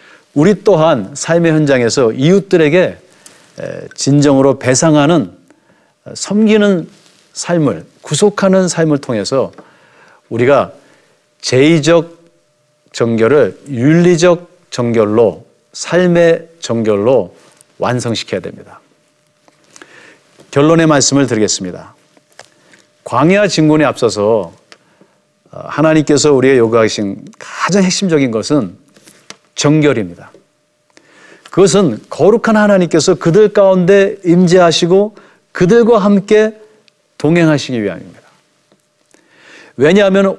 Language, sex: Korean, male